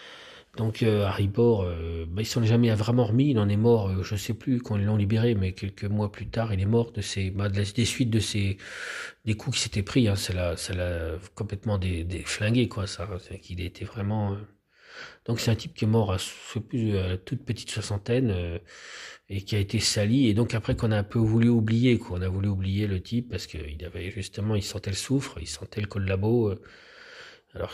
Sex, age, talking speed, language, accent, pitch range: male, 40-59, 225 wpm, French, French, 95-115 Hz